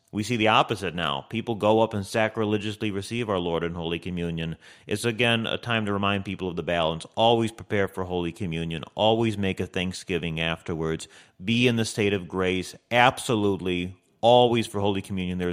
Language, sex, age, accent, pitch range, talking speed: English, male, 30-49, American, 90-115 Hz, 185 wpm